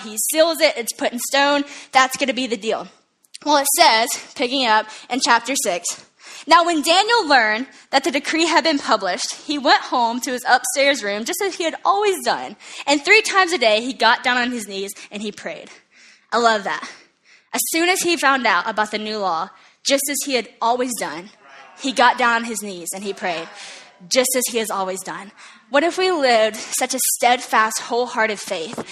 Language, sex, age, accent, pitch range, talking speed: English, female, 10-29, American, 220-310 Hz, 210 wpm